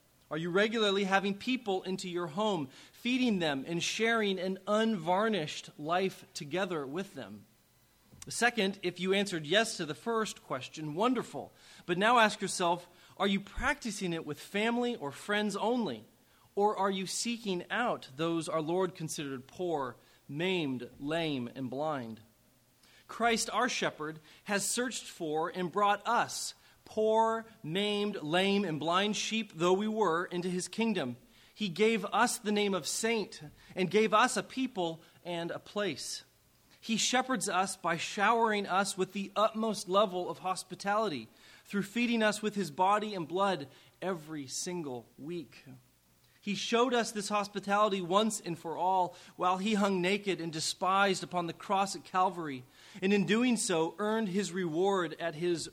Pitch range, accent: 165-210 Hz, American